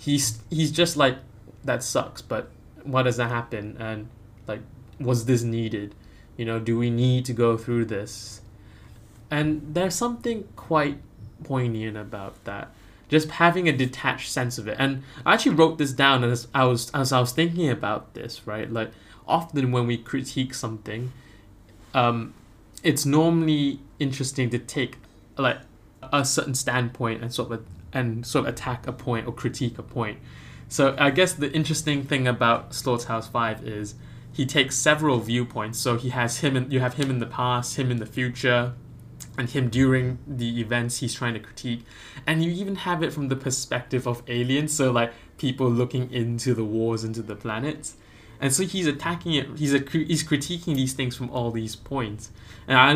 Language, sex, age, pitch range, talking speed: English, male, 20-39, 115-140 Hz, 180 wpm